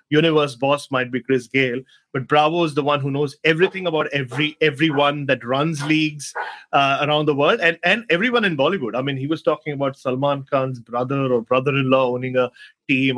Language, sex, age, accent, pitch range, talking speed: English, male, 30-49, Indian, 130-155 Hz, 195 wpm